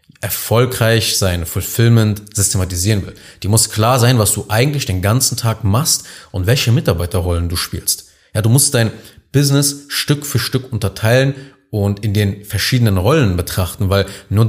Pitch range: 95-120 Hz